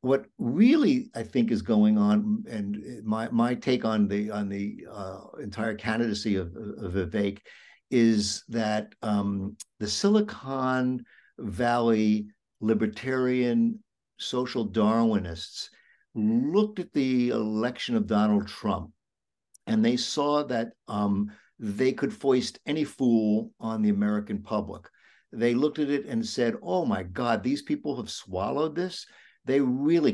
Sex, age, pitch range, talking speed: male, 60-79, 105-155 Hz, 135 wpm